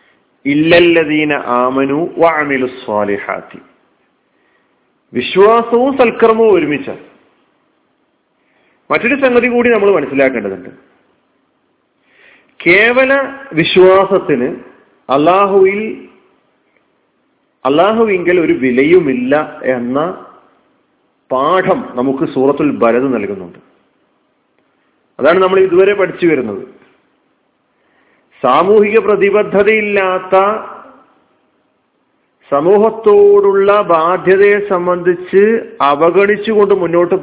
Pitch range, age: 165-225 Hz, 40-59